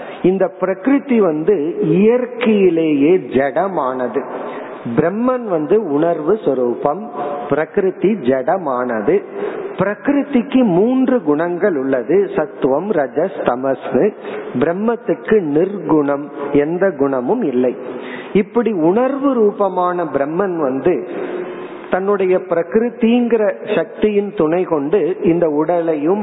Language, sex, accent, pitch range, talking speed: Tamil, male, native, 150-220 Hz, 60 wpm